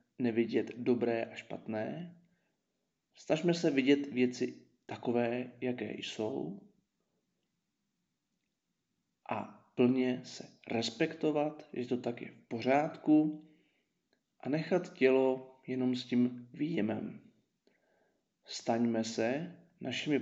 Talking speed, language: 90 wpm, Czech